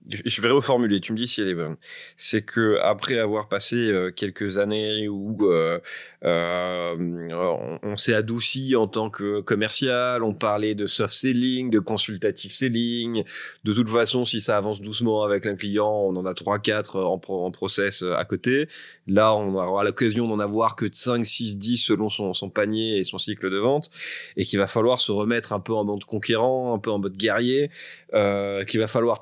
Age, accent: 20-39, French